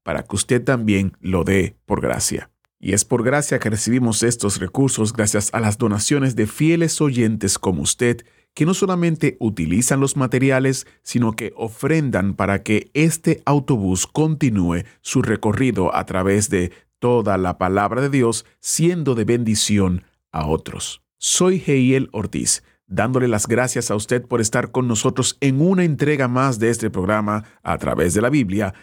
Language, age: Spanish, 40-59